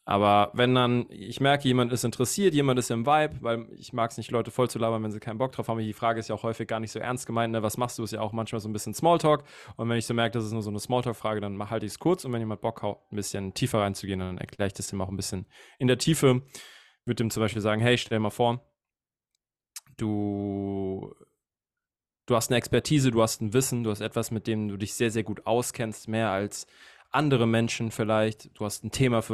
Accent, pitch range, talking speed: German, 105-125 Hz, 260 wpm